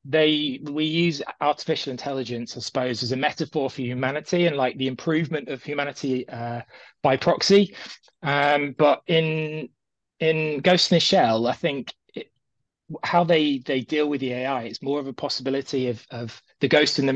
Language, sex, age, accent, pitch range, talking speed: English, male, 20-39, British, 120-145 Hz, 175 wpm